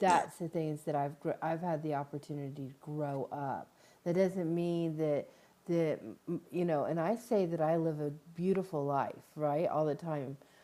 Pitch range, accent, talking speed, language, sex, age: 150-170 Hz, American, 185 wpm, English, female, 40-59